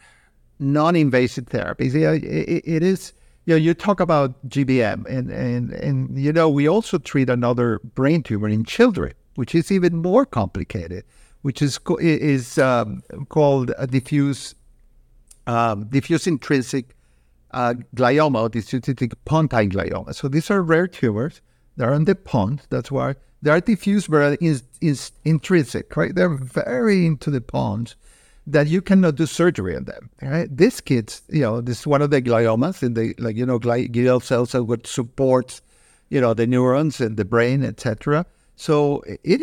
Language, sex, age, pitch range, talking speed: English, male, 50-69, 120-165 Hz, 165 wpm